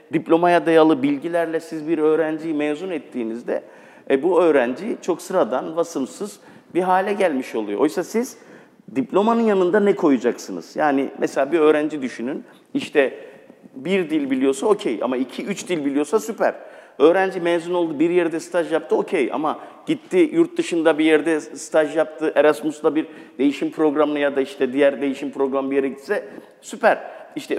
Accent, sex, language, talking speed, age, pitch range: native, male, Turkish, 155 wpm, 50-69, 145-205 Hz